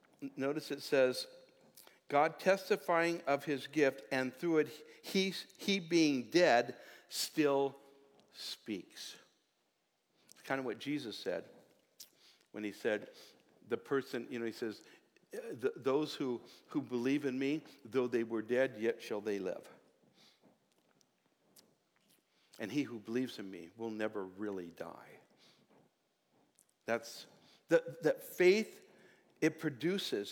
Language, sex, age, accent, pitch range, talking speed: English, male, 60-79, American, 130-160 Hz, 125 wpm